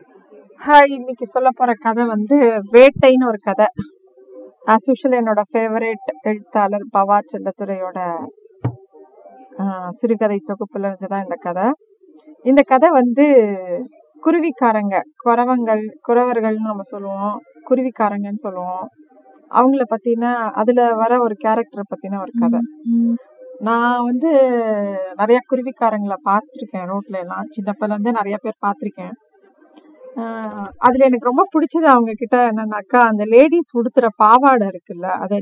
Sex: female